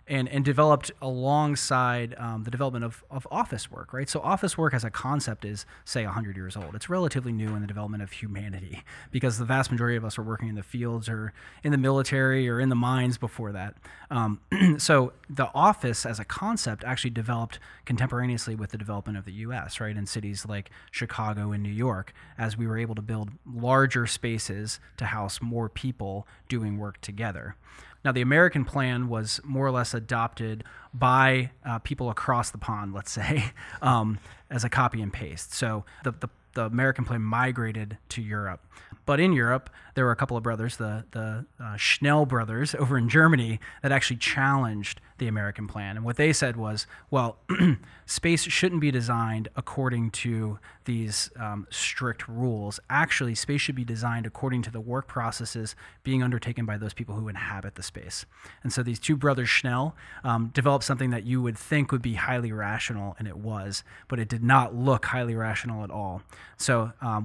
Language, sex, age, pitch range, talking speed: English, male, 30-49, 110-130 Hz, 190 wpm